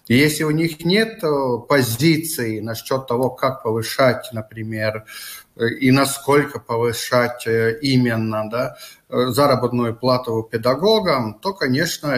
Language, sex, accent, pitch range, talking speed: Russian, male, native, 120-175 Hz, 95 wpm